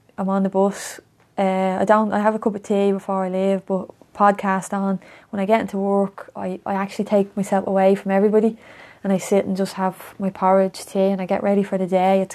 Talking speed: 240 wpm